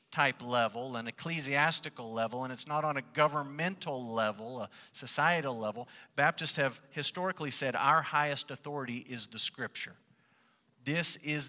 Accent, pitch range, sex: American, 130-165 Hz, male